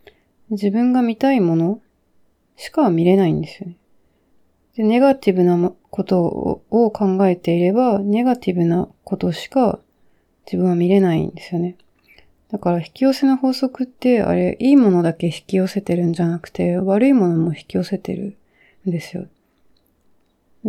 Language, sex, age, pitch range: Japanese, female, 30-49, 175-220 Hz